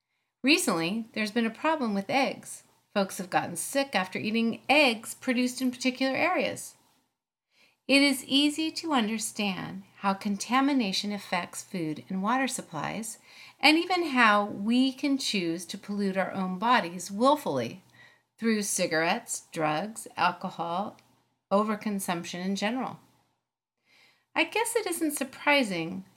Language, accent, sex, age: English, American, female, 40-59